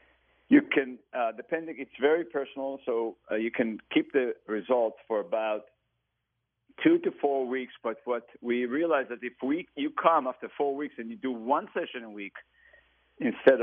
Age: 50-69